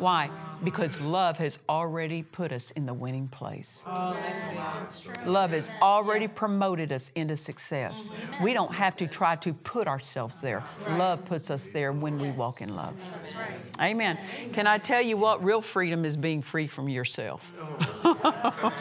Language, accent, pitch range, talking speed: English, American, 155-195 Hz, 155 wpm